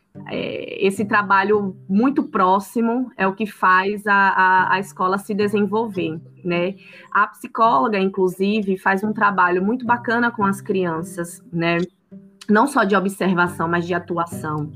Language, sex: Portuguese, female